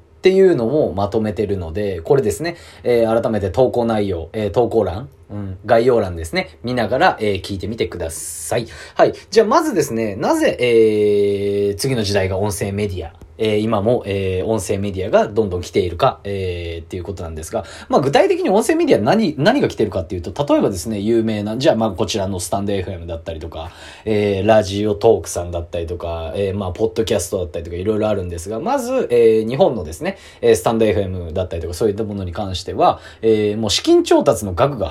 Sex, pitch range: male, 90-115 Hz